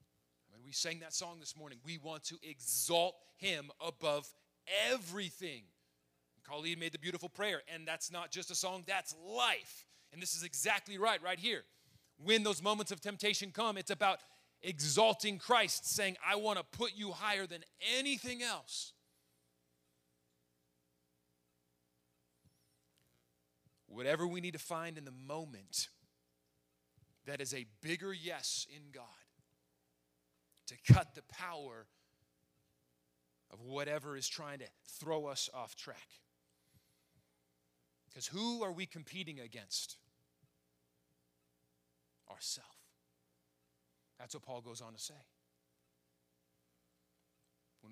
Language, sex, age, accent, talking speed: English, male, 30-49, American, 120 wpm